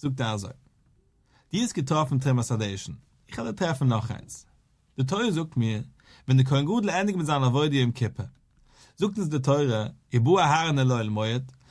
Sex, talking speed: male, 175 wpm